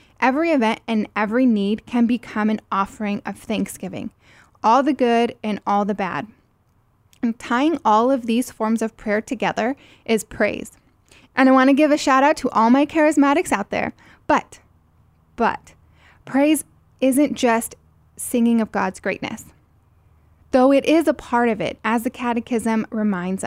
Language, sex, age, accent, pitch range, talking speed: English, female, 10-29, American, 215-270 Hz, 160 wpm